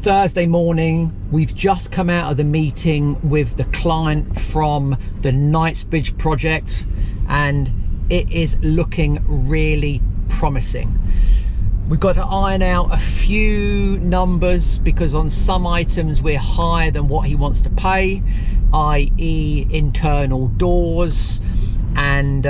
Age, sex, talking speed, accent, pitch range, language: 40-59, male, 125 wpm, British, 95-150 Hz, English